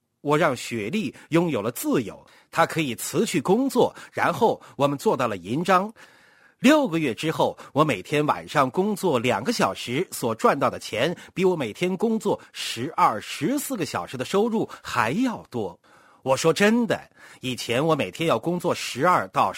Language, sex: Chinese, male